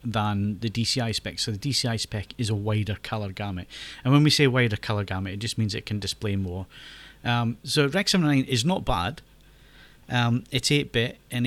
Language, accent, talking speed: English, British, 205 wpm